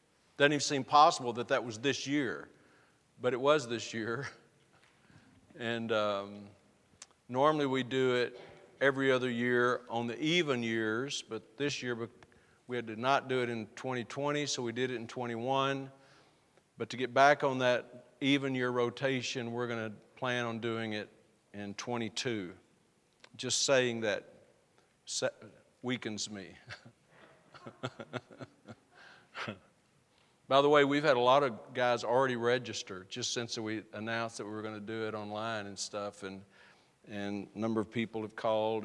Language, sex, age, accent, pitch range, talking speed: English, male, 50-69, American, 110-125 Hz, 155 wpm